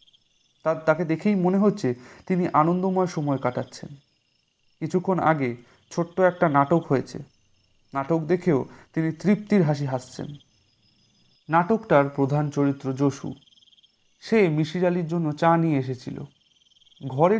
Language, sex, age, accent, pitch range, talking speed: Bengali, male, 40-59, native, 135-170 Hz, 105 wpm